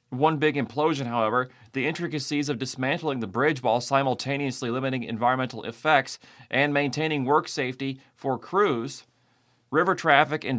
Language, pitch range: English, 125-155 Hz